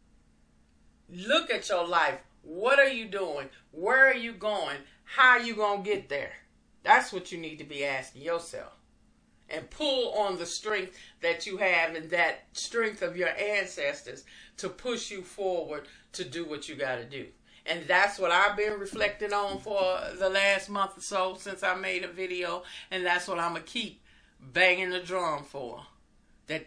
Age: 50-69